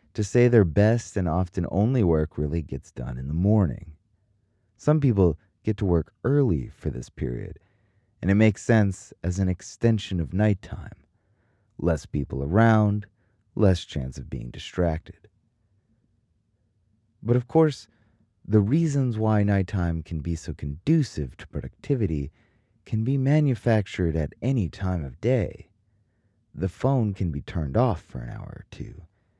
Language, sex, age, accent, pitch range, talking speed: English, male, 30-49, American, 85-110 Hz, 145 wpm